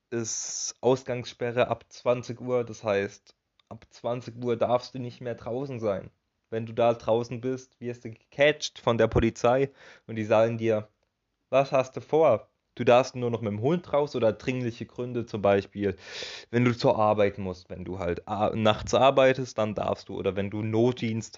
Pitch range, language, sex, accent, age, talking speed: 100-125 Hz, German, male, German, 20-39, 180 wpm